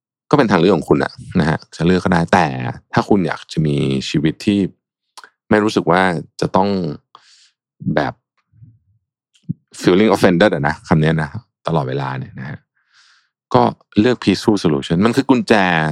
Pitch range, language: 80-115 Hz, Thai